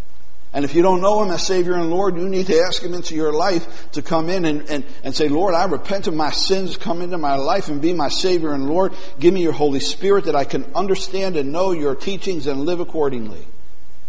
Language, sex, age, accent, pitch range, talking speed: English, male, 60-79, American, 145-180 Hz, 240 wpm